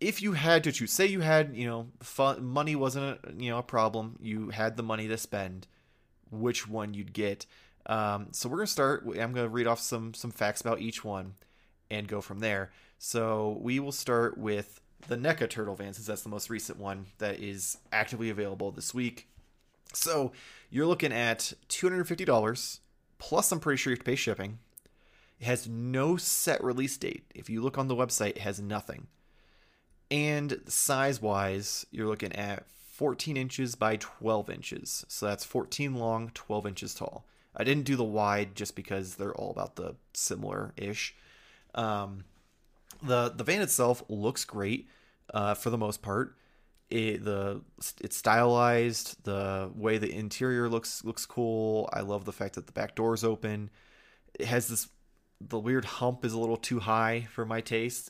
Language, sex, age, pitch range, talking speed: English, male, 20-39, 105-125 Hz, 180 wpm